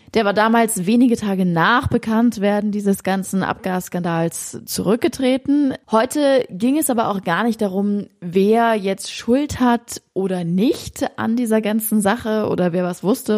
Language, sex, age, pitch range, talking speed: German, female, 20-39, 190-235 Hz, 150 wpm